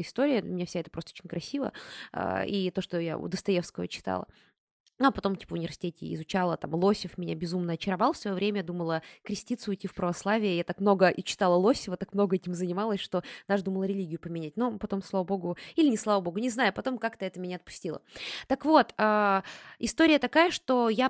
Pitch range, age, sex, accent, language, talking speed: 180-230 Hz, 20-39, female, native, Russian, 195 wpm